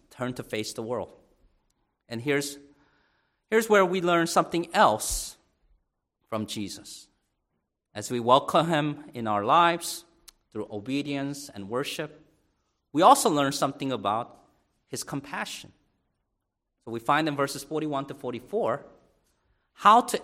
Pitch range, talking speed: 110-155 Hz, 130 wpm